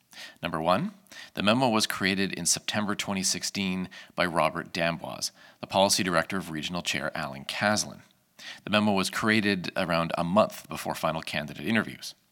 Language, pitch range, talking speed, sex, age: English, 85-105 Hz, 150 wpm, male, 40-59